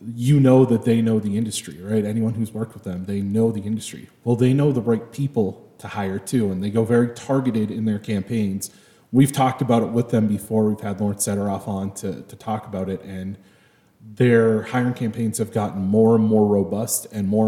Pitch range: 105-125 Hz